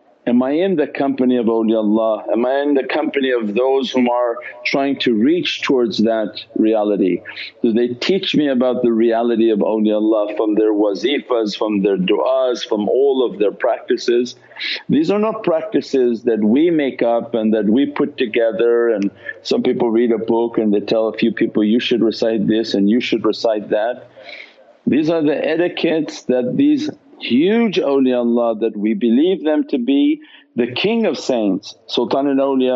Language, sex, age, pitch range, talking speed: English, male, 50-69, 110-145 Hz, 175 wpm